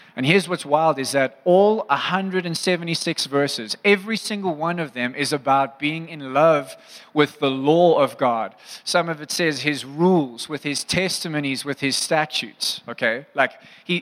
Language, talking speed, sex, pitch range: English, 165 wpm, male, 130-165 Hz